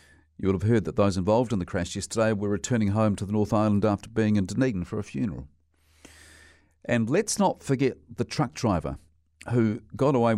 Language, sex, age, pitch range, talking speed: English, male, 50-69, 85-120 Hz, 200 wpm